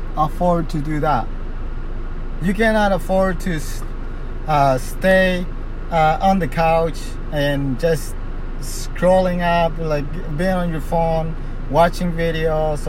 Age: 30-49